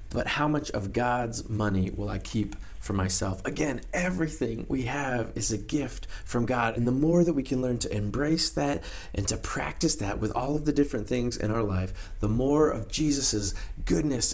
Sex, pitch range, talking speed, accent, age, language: male, 100-140 Hz, 200 wpm, American, 30-49, English